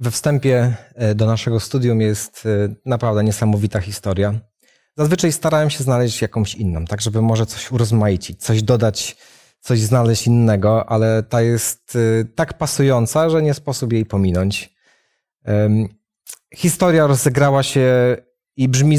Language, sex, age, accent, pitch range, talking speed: Polish, male, 30-49, native, 115-155 Hz, 125 wpm